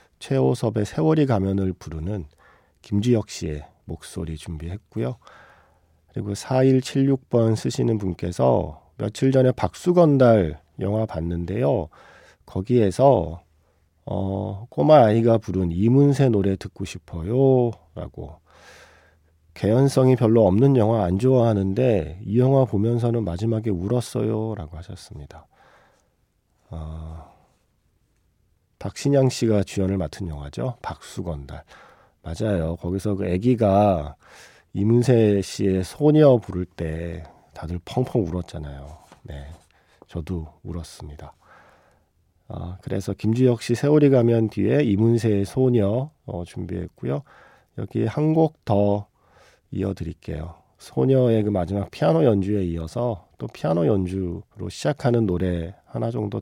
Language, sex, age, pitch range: Korean, male, 40-59, 85-120 Hz